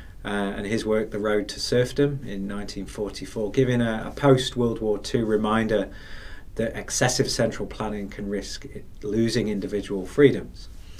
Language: English